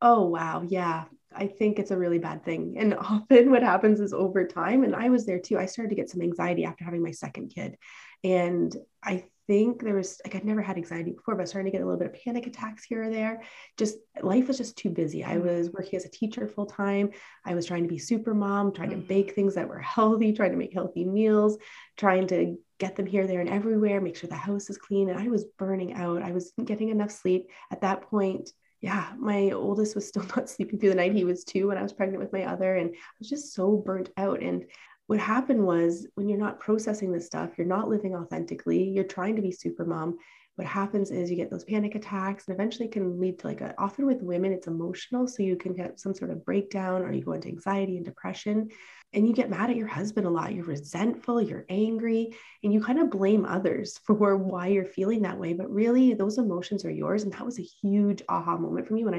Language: English